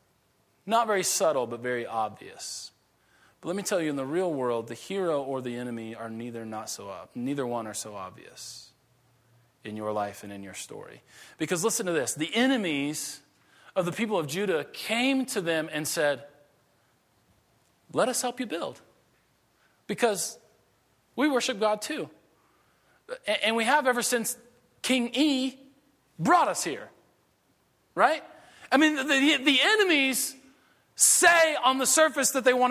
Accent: American